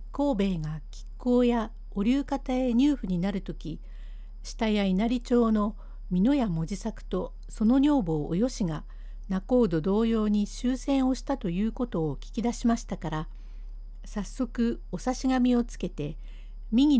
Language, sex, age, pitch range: Japanese, female, 60-79, 185-245 Hz